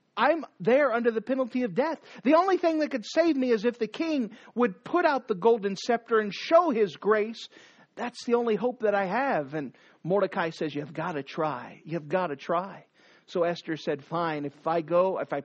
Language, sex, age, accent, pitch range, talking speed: English, male, 40-59, American, 180-245 Hz, 215 wpm